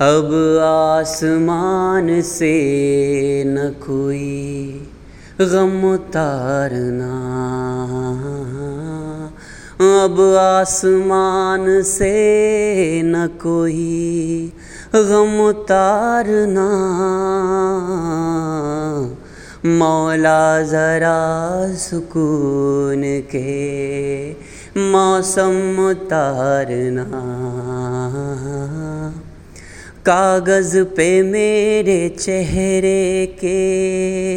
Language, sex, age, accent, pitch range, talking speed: Hindi, male, 30-49, native, 140-190 Hz, 45 wpm